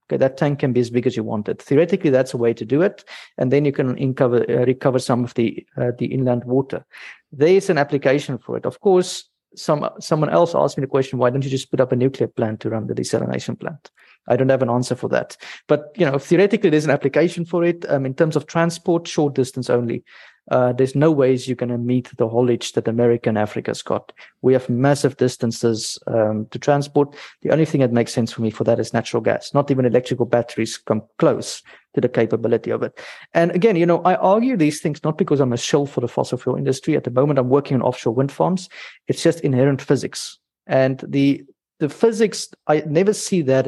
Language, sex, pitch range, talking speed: English, male, 120-150 Hz, 230 wpm